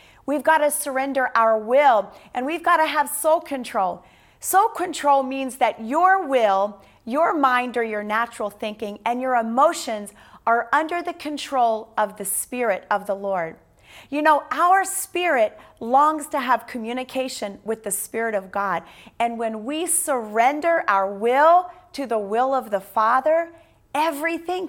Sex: female